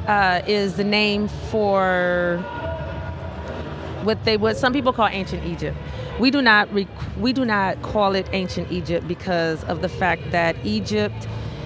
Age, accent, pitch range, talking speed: 30-49, American, 160-195 Hz, 150 wpm